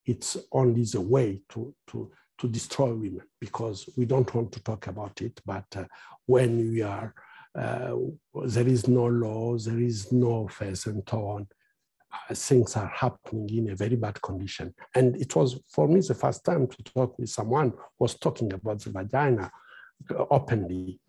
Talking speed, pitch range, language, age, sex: 170 wpm, 110-125 Hz, English, 60-79, male